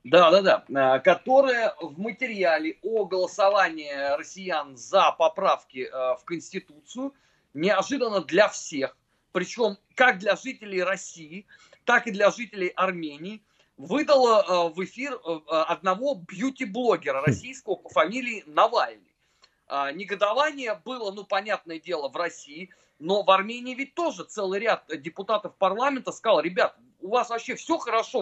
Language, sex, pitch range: Russian, male, 185-260 Hz